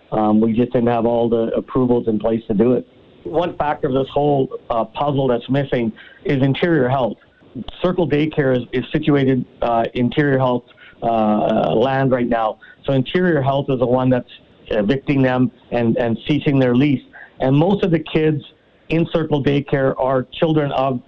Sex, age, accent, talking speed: male, 50-69, American, 175 wpm